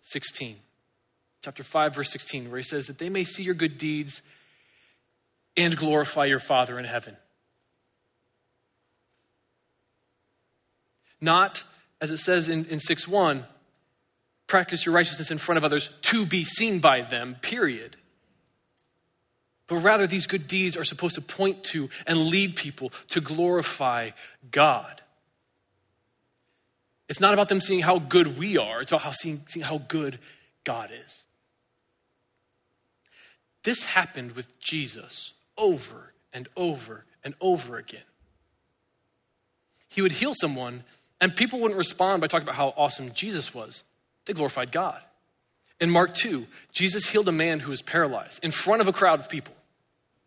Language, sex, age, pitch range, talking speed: English, male, 20-39, 145-185 Hz, 140 wpm